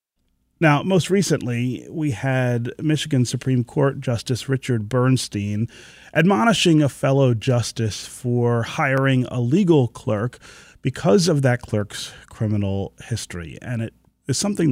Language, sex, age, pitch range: English, male, 30-49, 110-135 Hz